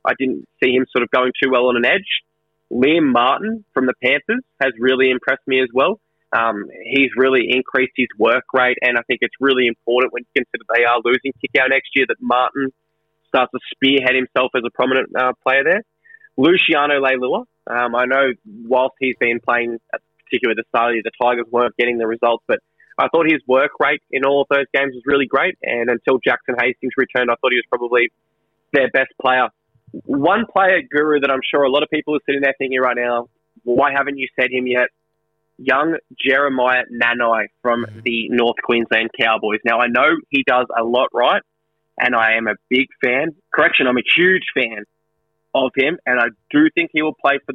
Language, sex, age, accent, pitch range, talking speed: English, male, 20-39, Australian, 120-140 Hz, 205 wpm